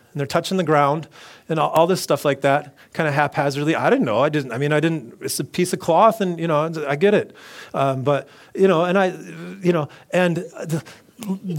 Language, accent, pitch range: English, American, 150-210 Hz